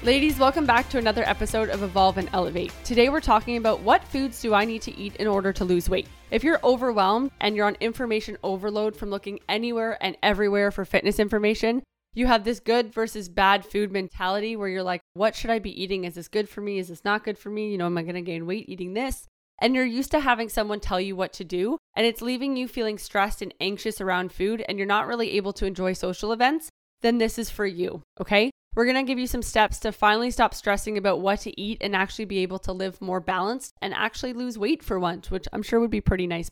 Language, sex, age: English, female, 20-39